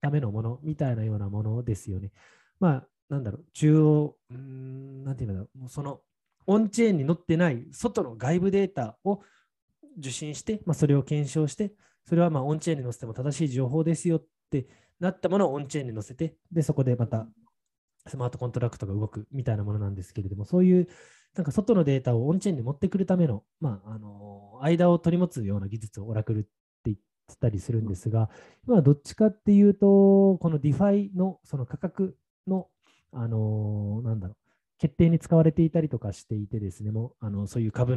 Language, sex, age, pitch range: Japanese, male, 20-39, 105-165 Hz